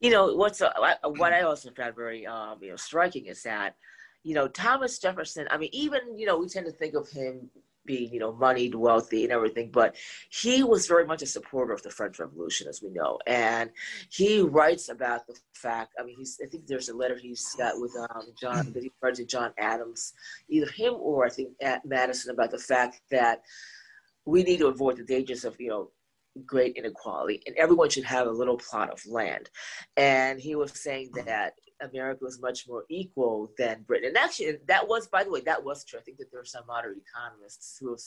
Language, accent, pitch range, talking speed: English, American, 120-165 Hz, 220 wpm